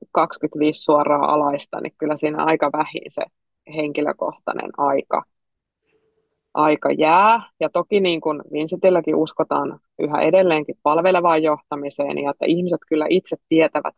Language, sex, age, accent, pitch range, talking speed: Finnish, female, 20-39, native, 150-180 Hz, 120 wpm